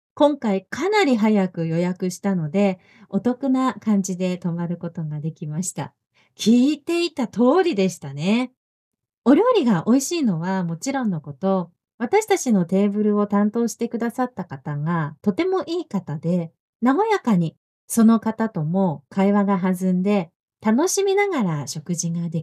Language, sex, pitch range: Japanese, female, 180-265 Hz